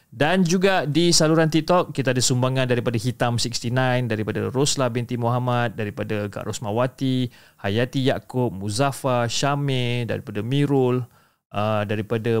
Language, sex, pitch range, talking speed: Malay, male, 110-135 Hz, 125 wpm